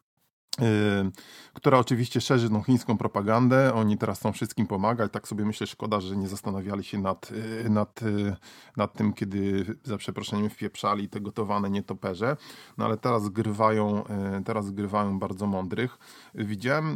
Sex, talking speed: male, 140 wpm